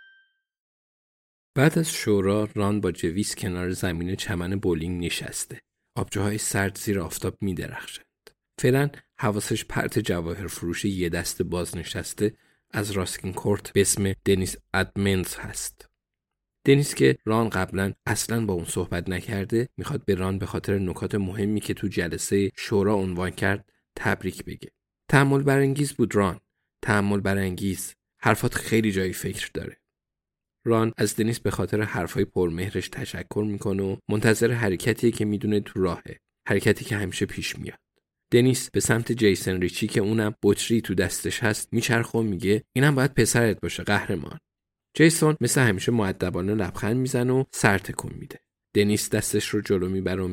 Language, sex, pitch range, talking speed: Persian, male, 95-120 Hz, 150 wpm